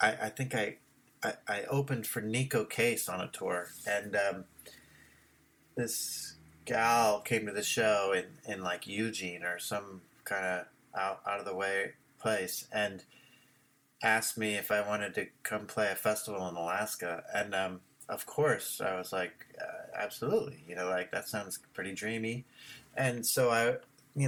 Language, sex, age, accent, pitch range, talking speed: English, male, 30-49, American, 105-130 Hz, 155 wpm